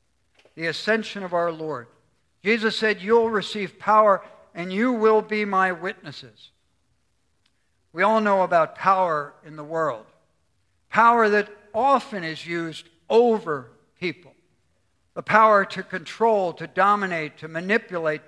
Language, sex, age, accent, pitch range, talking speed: English, male, 60-79, American, 155-220 Hz, 130 wpm